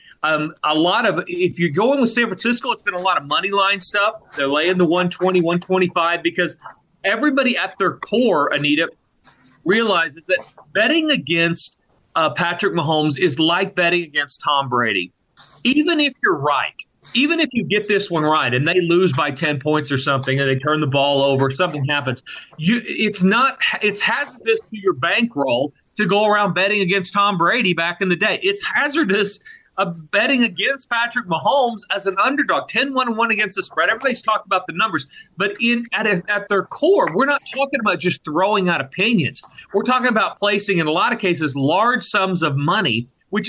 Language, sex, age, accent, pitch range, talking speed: English, male, 40-59, American, 165-220 Hz, 190 wpm